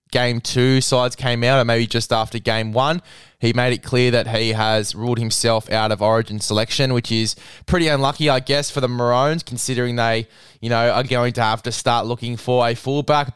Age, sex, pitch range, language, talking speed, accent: 20-39, male, 110-130 Hz, English, 210 wpm, Australian